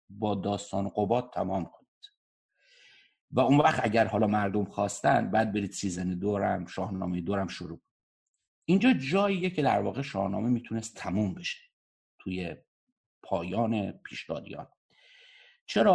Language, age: Persian, 50-69